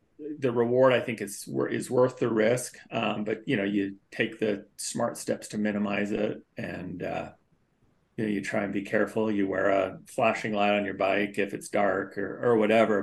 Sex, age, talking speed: male, 30-49, 205 wpm